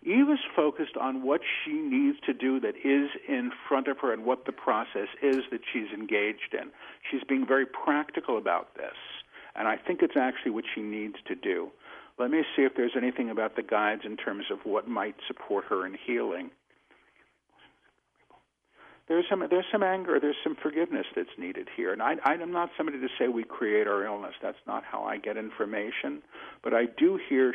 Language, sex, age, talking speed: English, male, 50-69, 195 wpm